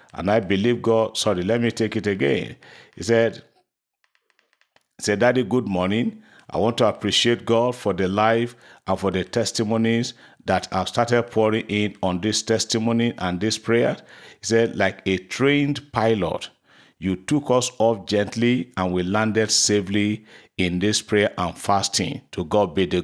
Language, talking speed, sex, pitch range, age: English, 165 wpm, male, 95-115 Hz, 50-69